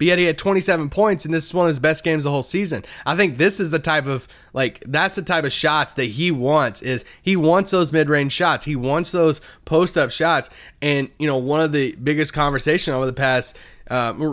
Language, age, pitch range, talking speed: English, 20-39, 135-180 Hz, 245 wpm